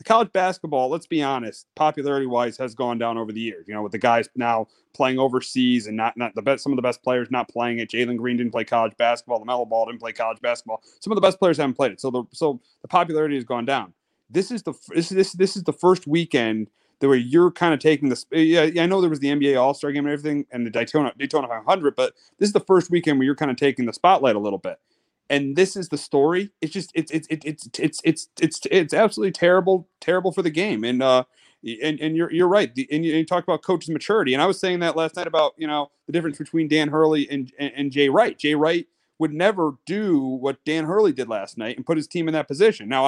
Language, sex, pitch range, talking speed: English, male, 130-170 Hz, 265 wpm